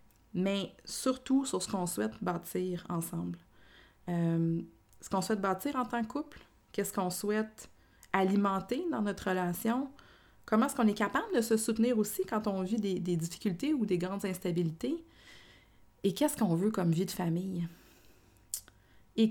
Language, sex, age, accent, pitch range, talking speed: French, female, 30-49, Canadian, 175-220 Hz, 160 wpm